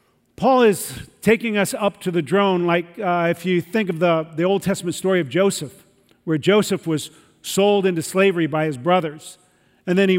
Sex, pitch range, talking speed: male, 160-200 Hz, 195 wpm